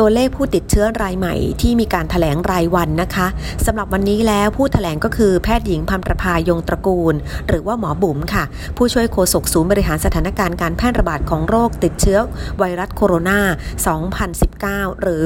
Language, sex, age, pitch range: Thai, female, 30-49, 165-210 Hz